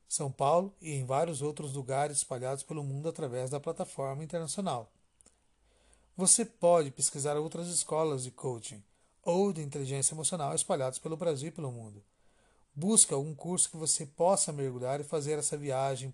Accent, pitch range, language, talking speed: Brazilian, 135-165 Hz, Portuguese, 155 wpm